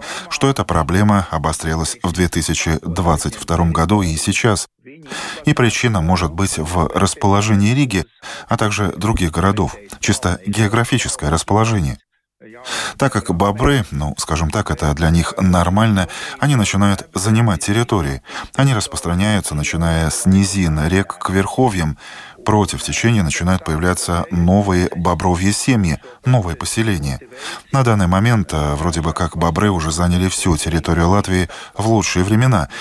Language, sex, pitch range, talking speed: Russian, male, 85-105 Hz, 125 wpm